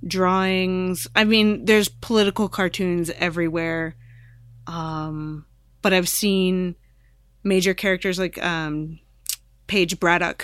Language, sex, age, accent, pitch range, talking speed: English, female, 20-39, American, 155-180 Hz, 100 wpm